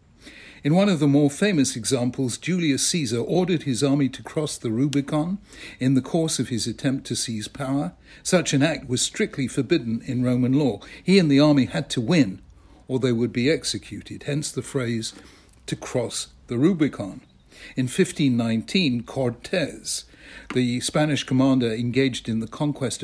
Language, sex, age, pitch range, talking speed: English, male, 60-79, 120-150 Hz, 165 wpm